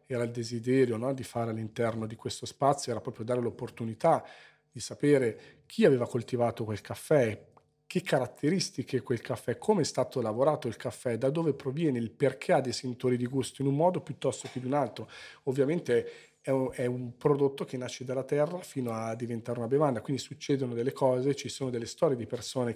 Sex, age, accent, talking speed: male, 40-59, native, 195 wpm